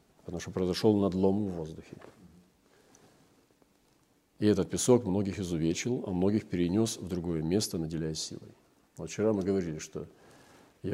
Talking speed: 135 wpm